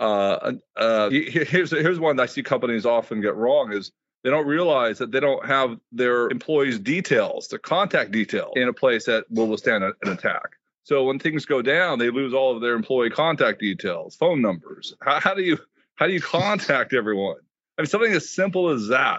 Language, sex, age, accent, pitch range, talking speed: English, male, 40-59, American, 110-135 Hz, 205 wpm